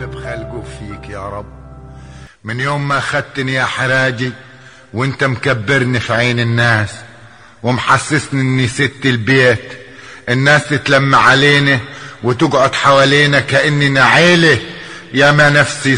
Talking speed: 105 wpm